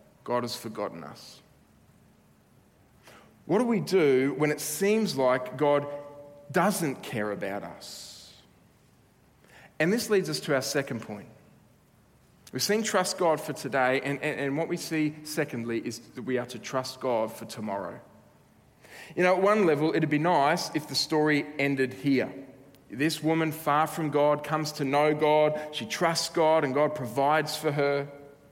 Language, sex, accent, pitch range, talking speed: English, male, Australian, 130-155 Hz, 160 wpm